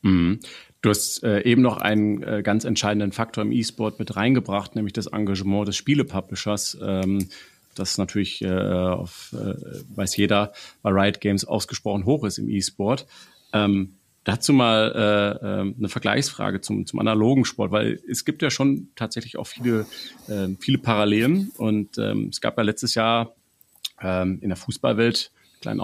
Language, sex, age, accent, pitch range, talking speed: German, male, 40-59, German, 100-115 Hz, 165 wpm